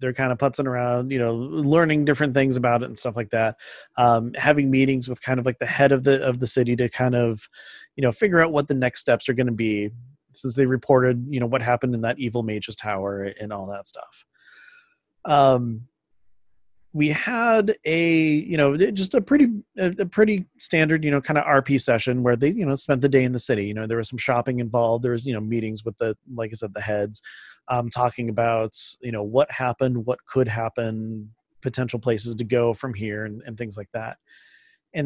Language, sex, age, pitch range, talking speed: English, male, 30-49, 115-145 Hz, 225 wpm